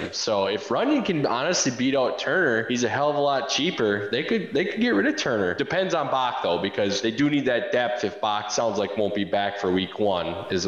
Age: 20-39